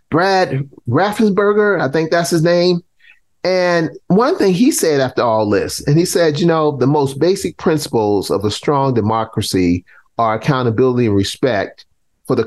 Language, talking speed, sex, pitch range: English, 165 wpm, male, 125-175 Hz